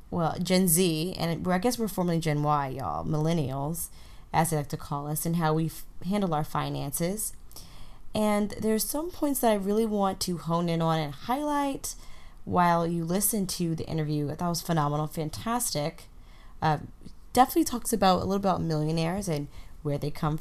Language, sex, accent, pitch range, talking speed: English, female, American, 155-195 Hz, 185 wpm